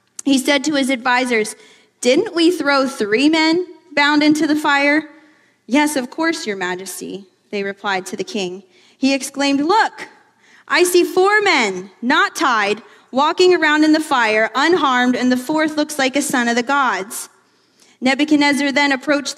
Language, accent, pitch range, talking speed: English, American, 250-320 Hz, 160 wpm